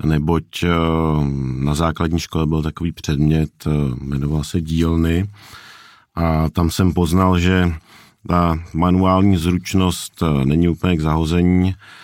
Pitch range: 75-90 Hz